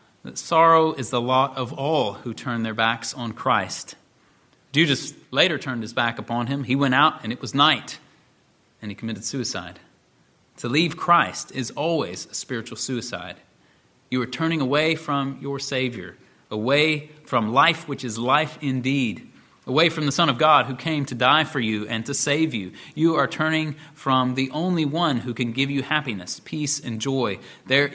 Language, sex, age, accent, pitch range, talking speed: English, male, 30-49, American, 115-150 Hz, 180 wpm